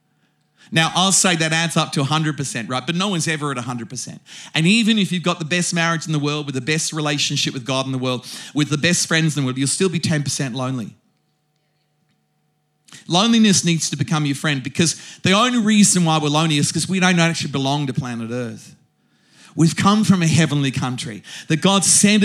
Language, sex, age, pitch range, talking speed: English, male, 40-59, 150-195 Hz, 210 wpm